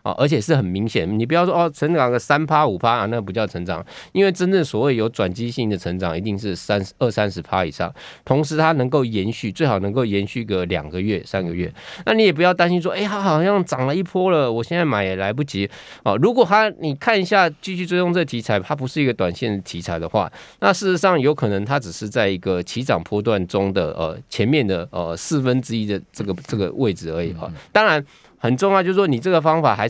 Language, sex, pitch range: Chinese, male, 95-150 Hz